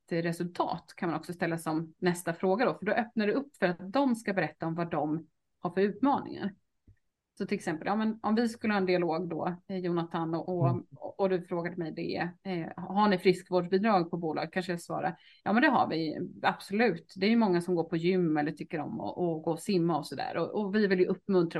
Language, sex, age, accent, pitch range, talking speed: Swedish, female, 30-49, native, 175-230 Hz, 235 wpm